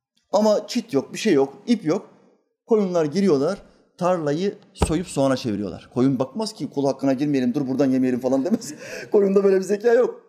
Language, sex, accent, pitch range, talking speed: Turkish, male, native, 140-225 Hz, 175 wpm